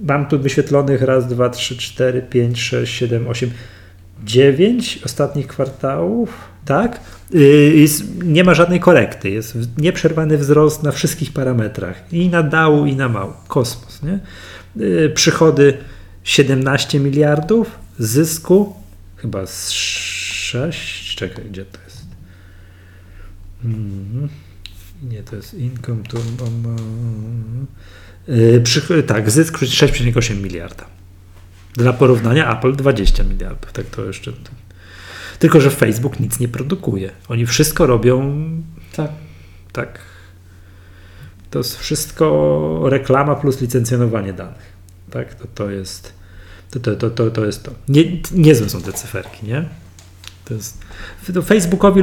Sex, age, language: male, 40-59, Polish